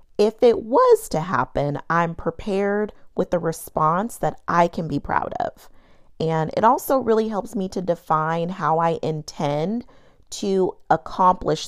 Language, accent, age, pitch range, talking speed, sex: English, American, 30-49, 165-235 Hz, 150 wpm, female